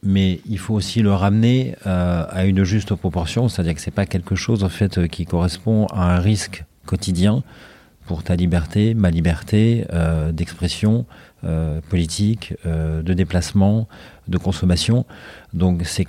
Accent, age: French, 40-59